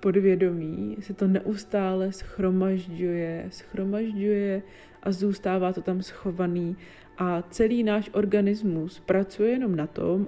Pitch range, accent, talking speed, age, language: 180-200 Hz, native, 110 wpm, 20-39, Czech